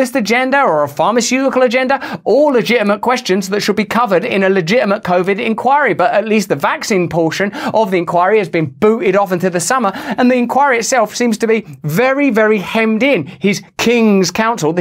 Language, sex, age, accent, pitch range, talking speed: English, male, 30-49, British, 190-255 Hz, 190 wpm